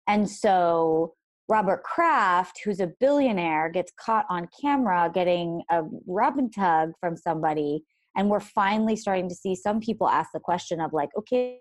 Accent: American